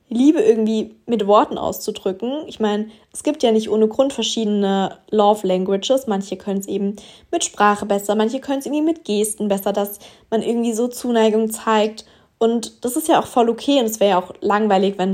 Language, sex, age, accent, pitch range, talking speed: German, female, 20-39, German, 195-240 Hz, 195 wpm